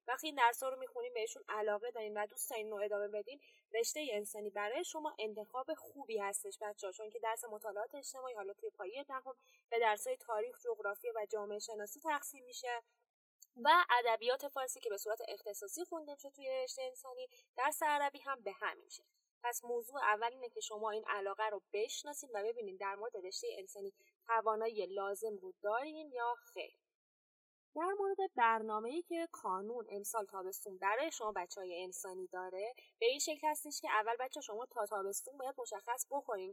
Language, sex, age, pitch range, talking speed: Persian, female, 10-29, 210-290 Hz, 170 wpm